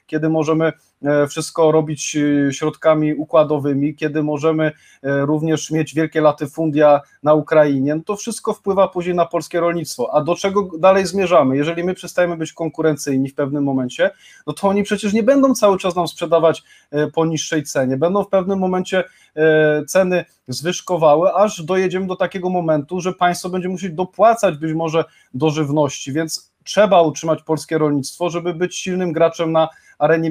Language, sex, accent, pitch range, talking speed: Polish, male, native, 150-185 Hz, 155 wpm